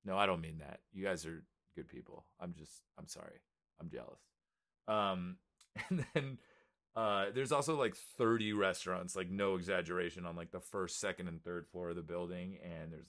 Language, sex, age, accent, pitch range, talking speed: English, male, 30-49, American, 90-110 Hz, 190 wpm